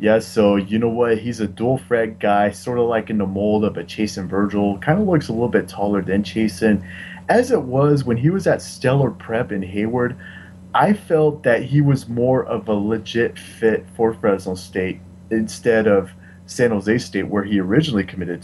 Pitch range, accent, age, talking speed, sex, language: 95-115 Hz, American, 30-49, 200 wpm, male, English